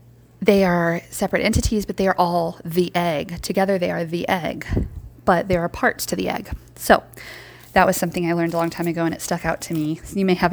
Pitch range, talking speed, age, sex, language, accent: 170-210 Hz, 235 wpm, 20-39, female, English, American